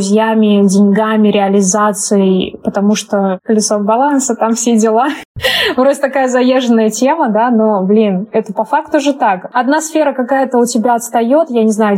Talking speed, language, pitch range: 155 wpm, Russian, 215-245 Hz